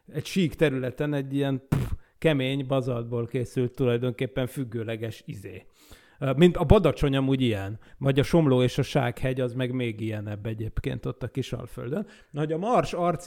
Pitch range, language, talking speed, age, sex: 130-155 Hz, Hungarian, 160 wpm, 30-49, male